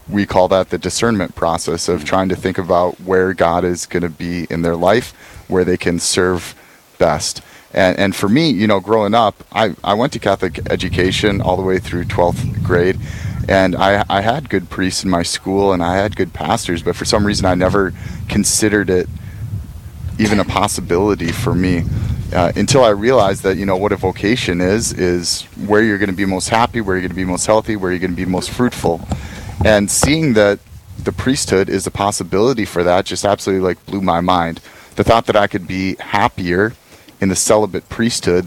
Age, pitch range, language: 30-49, 90-105 Hz, English